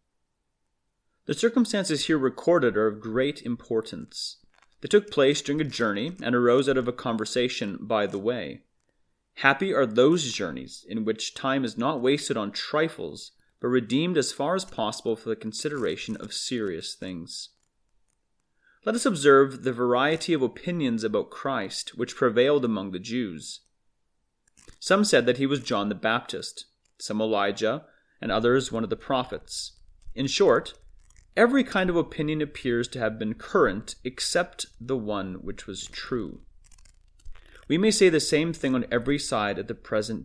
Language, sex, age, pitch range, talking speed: English, male, 30-49, 110-150 Hz, 160 wpm